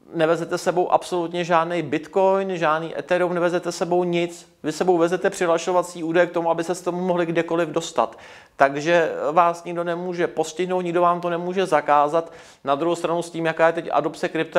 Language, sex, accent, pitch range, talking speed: Czech, male, native, 150-175 Hz, 180 wpm